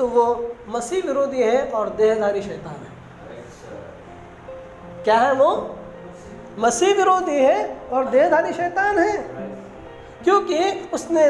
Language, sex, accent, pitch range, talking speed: Hindi, female, native, 250-355 Hz, 110 wpm